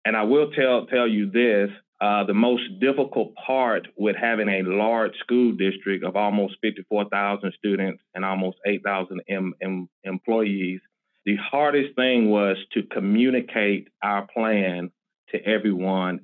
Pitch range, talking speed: 95-115 Hz, 140 wpm